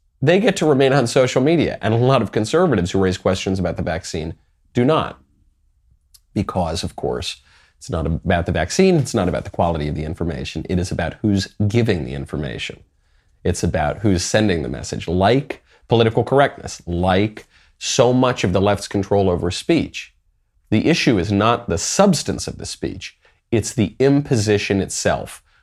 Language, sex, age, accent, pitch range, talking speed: English, male, 30-49, American, 85-115 Hz, 175 wpm